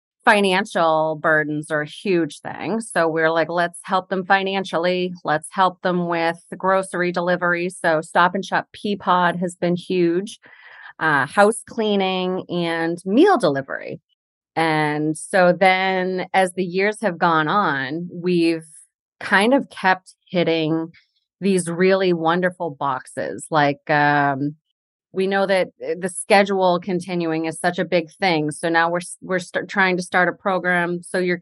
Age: 30-49